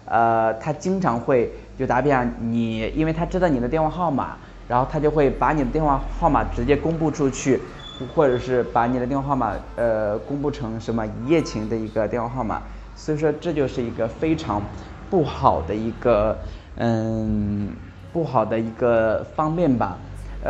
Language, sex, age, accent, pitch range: Chinese, male, 20-39, native, 110-155 Hz